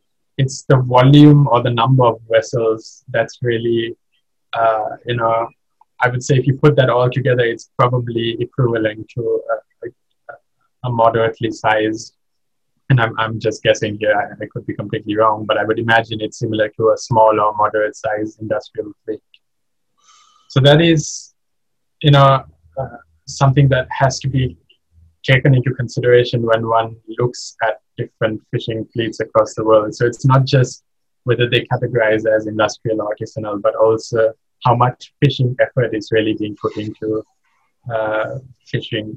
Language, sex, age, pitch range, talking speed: English, male, 20-39, 110-125 Hz, 160 wpm